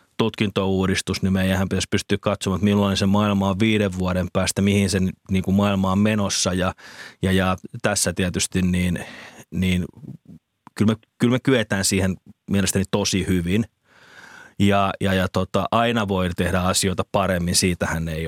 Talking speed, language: 160 wpm, Finnish